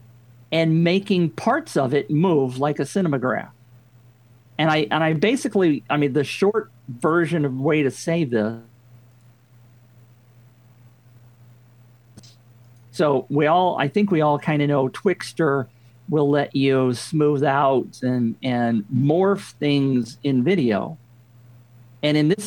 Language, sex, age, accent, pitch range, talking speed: English, male, 50-69, American, 120-165 Hz, 130 wpm